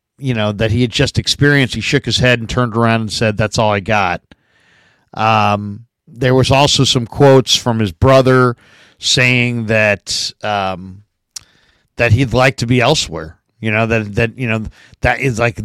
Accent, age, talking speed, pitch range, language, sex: American, 50-69, 180 wpm, 105-130 Hz, English, male